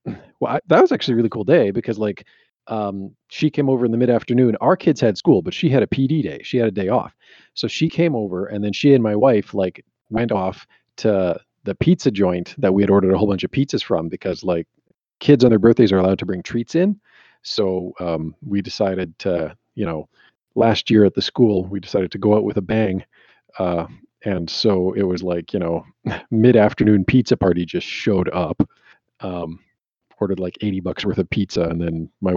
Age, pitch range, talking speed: 40-59, 95-120 Hz, 210 wpm